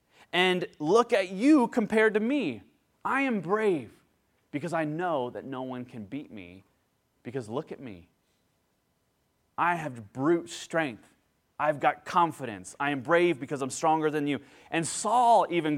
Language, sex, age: English, male, 30-49